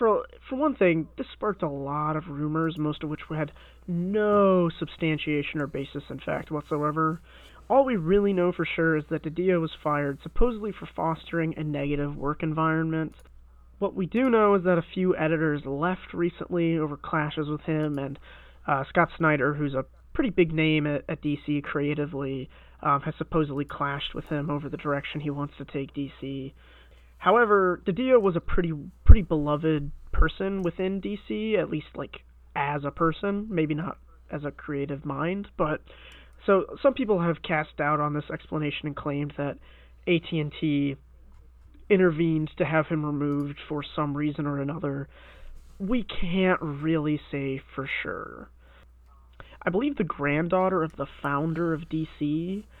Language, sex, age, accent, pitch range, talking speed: English, male, 20-39, American, 145-175 Hz, 160 wpm